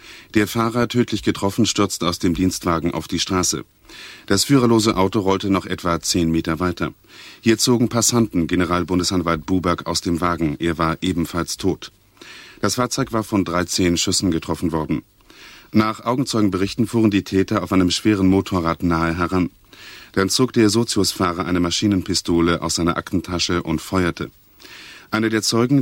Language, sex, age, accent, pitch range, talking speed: German, male, 40-59, German, 85-105 Hz, 150 wpm